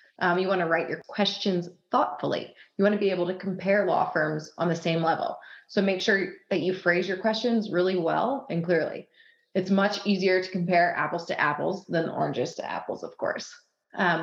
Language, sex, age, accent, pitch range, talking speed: English, female, 30-49, American, 175-215 Hz, 195 wpm